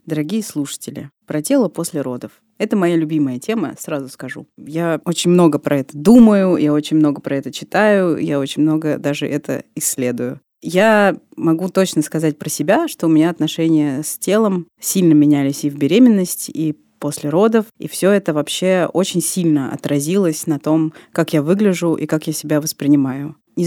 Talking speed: 170 wpm